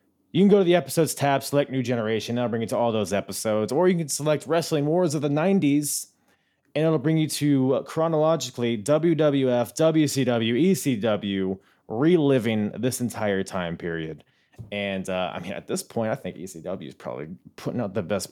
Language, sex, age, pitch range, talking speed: English, male, 20-39, 105-150 Hz, 185 wpm